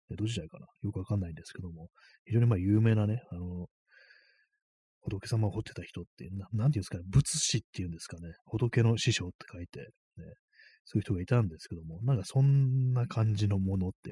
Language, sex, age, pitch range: Japanese, male, 30-49, 90-125 Hz